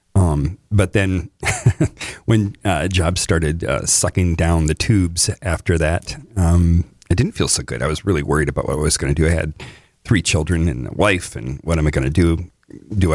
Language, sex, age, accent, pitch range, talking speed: English, male, 40-59, American, 80-115 Hz, 210 wpm